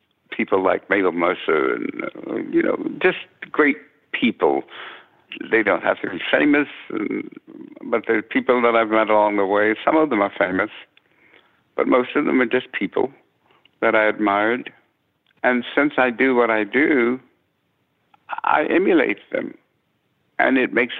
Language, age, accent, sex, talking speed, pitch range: English, 70-89, American, male, 155 wpm, 105-140 Hz